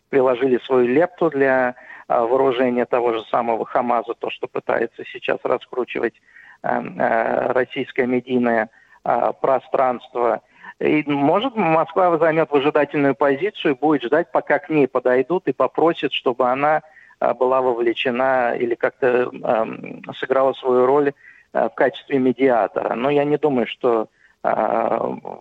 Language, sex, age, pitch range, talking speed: Russian, male, 50-69, 125-145 Hz, 130 wpm